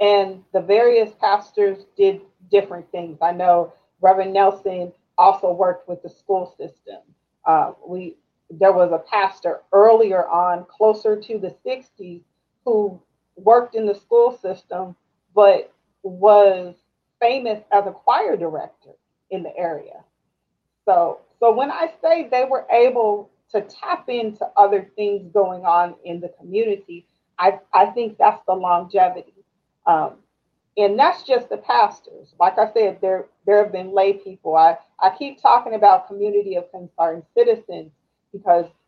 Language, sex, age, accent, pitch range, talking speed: English, female, 40-59, American, 180-230 Hz, 145 wpm